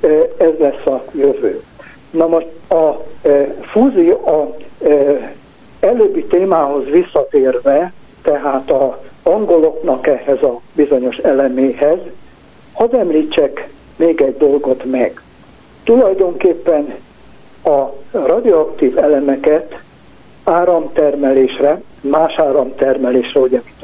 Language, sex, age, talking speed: Hungarian, male, 60-79, 85 wpm